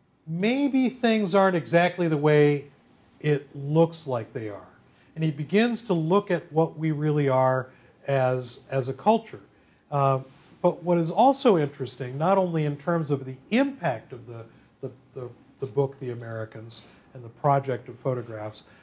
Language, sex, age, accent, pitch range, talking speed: English, male, 40-59, American, 130-160 Hz, 165 wpm